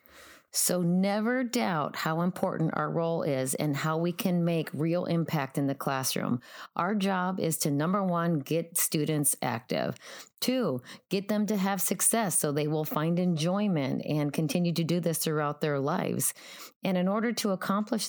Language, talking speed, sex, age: English, 170 wpm, female, 40-59